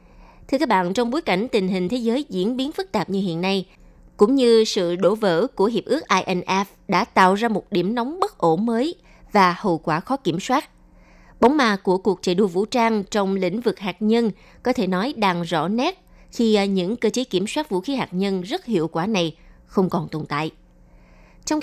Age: 20-39